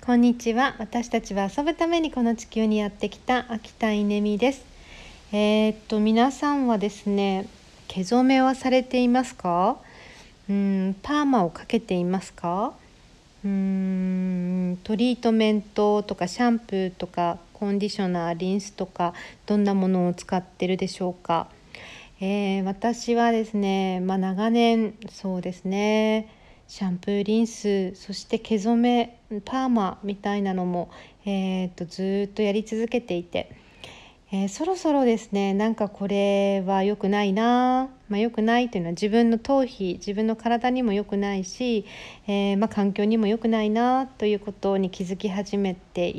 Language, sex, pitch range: Japanese, female, 190-230 Hz